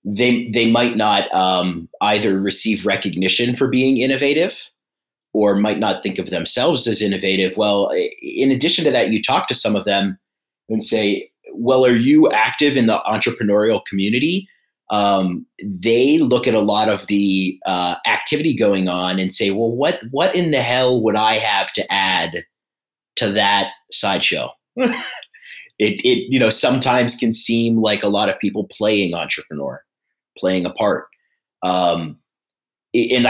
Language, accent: English, American